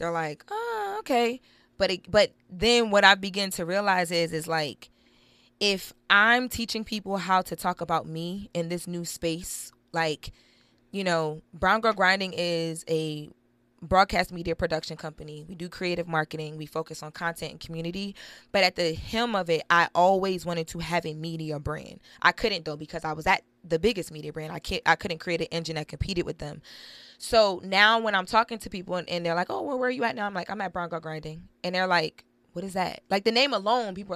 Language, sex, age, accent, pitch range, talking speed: English, female, 20-39, American, 165-205 Hz, 215 wpm